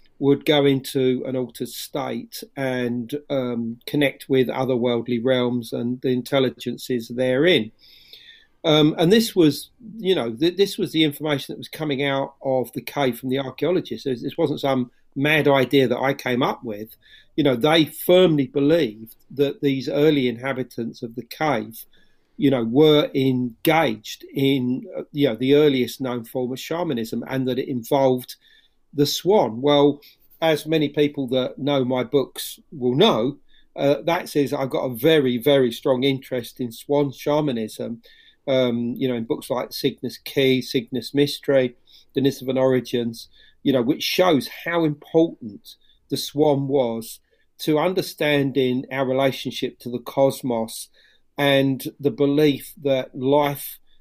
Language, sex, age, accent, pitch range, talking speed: English, male, 40-59, British, 125-145 Hz, 150 wpm